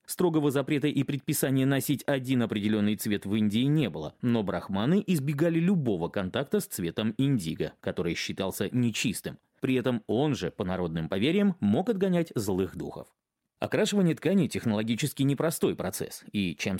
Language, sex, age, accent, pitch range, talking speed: Russian, male, 30-49, native, 105-160 Hz, 145 wpm